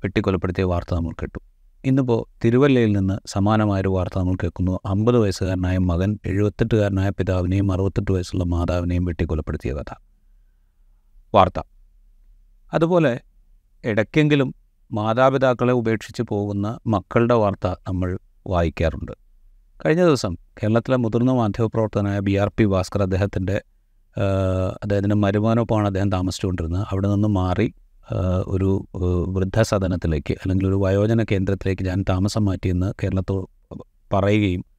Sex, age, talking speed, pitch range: male, 30-49, 95 wpm, 95-110 Hz